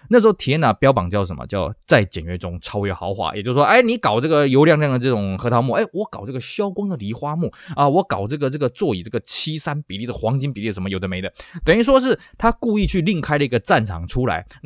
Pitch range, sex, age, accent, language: 100-145 Hz, male, 20-39, native, Chinese